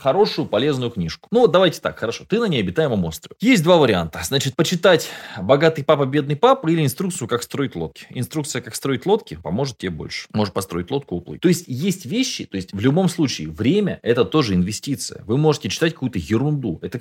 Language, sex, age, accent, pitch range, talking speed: Russian, male, 20-39, native, 95-155 Hz, 195 wpm